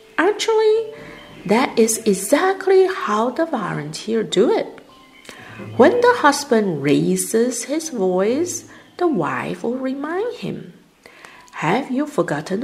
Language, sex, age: Chinese, female, 50-69